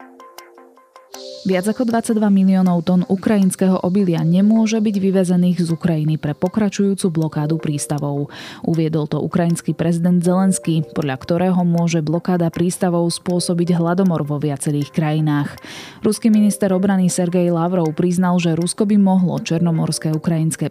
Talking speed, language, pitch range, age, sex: 125 wpm, Slovak, 155-190 Hz, 20-39, female